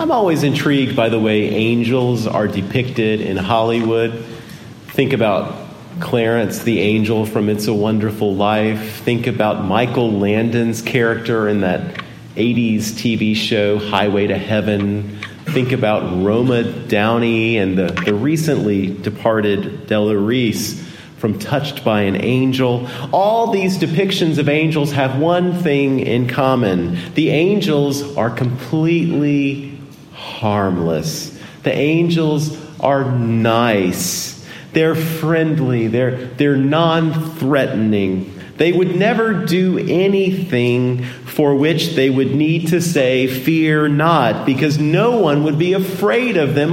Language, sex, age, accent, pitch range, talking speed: English, male, 40-59, American, 110-155 Hz, 125 wpm